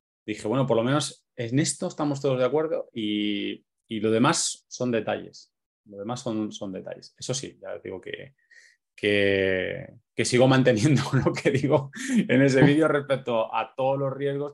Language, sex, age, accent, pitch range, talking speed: Spanish, male, 20-39, Spanish, 110-135 Hz, 180 wpm